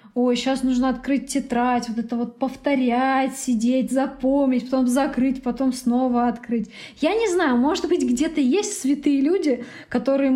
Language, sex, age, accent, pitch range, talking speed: Russian, female, 20-39, native, 240-290 Hz, 150 wpm